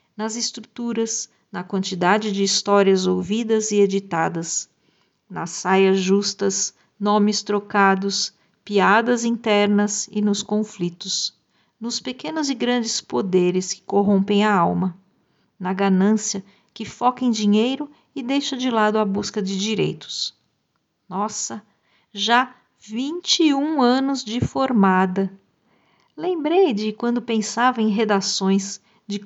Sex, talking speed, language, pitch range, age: female, 115 wpm, Portuguese, 195-230 Hz, 50-69